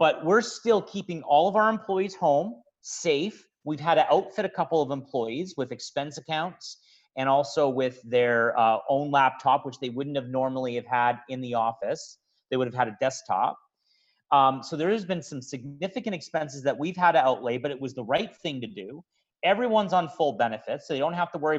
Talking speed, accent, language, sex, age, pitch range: 210 wpm, American, English, male, 40-59, 140-195 Hz